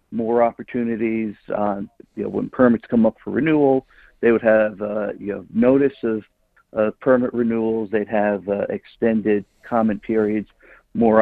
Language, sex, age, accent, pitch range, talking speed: English, male, 50-69, American, 105-120 Hz, 155 wpm